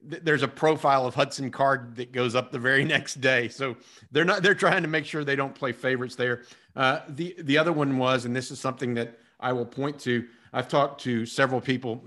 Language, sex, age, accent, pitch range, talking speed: English, male, 50-69, American, 115-145 Hz, 230 wpm